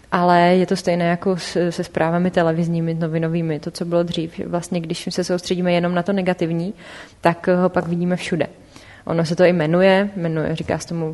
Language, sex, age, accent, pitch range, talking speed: Czech, female, 20-39, native, 165-180 Hz, 190 wpm